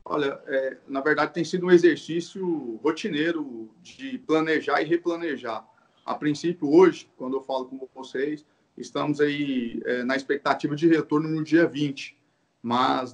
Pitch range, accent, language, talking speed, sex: 135-170 Hz, Brazilian, Portuguese, 145 wpm, male